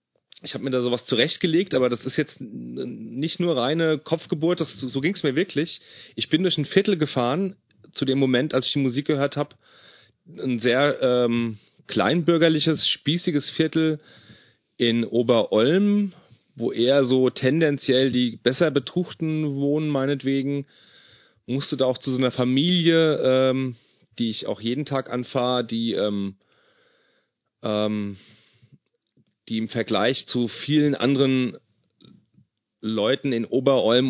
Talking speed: 140 wpm